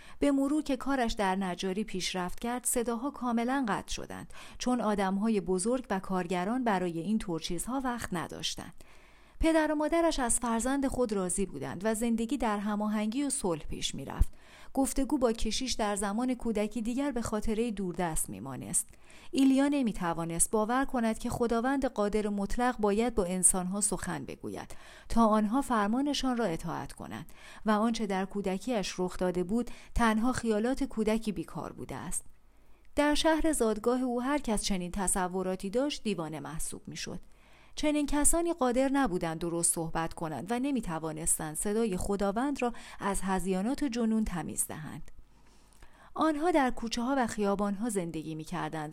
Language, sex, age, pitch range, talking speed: Persian, female, 40-59, 190-255 Hz, 145 wpm